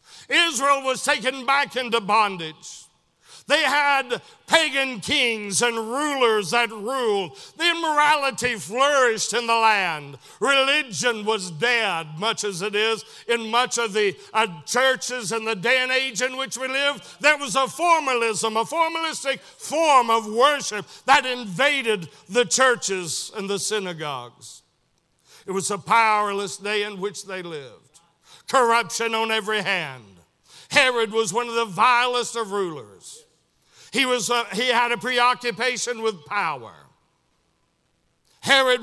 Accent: American